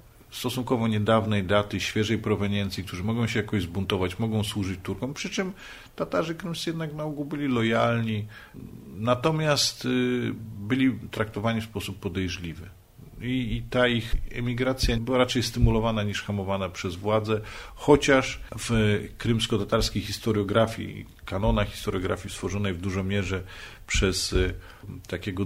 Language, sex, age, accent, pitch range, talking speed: Polish, male, 40-59, native, 100-120 Hz, 125 wpm